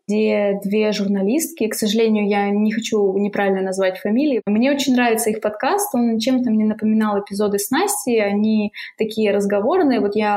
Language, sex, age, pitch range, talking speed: Russian, female, 20-39, 200-225 Hz, 160 wpm